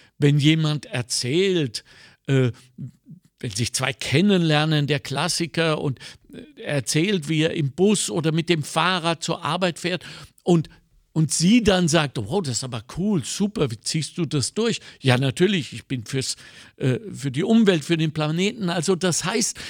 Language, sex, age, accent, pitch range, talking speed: German, male, 60-79, German, 140-195 Hz, 160 wpm